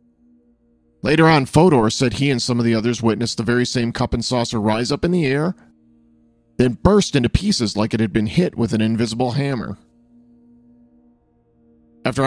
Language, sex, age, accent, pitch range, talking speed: English, male, 40-59, American, 110-125 Hz, 175 wpm